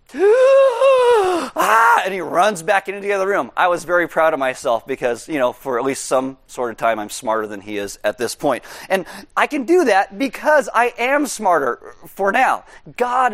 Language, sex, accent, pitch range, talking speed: English, male, American, 150-230 Hz, 200 wpm